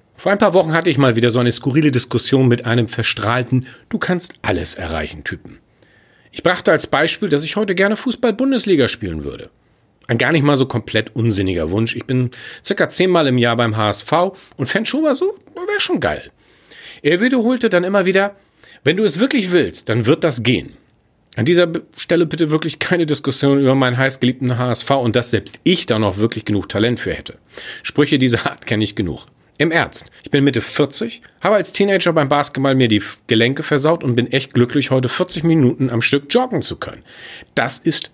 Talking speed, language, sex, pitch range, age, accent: 190 wpm, German, male, 120-175 Hz, 40-59, German